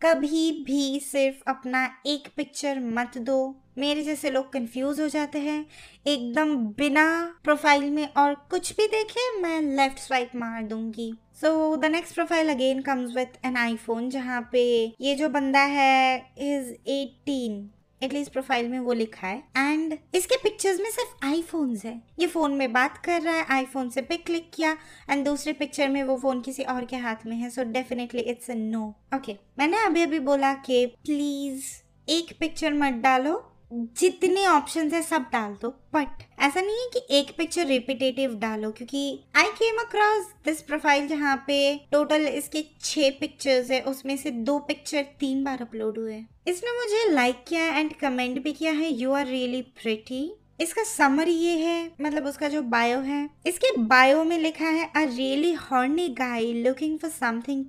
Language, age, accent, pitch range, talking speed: Hindi, 20-39, native, 255-310 Hz, 175 wpm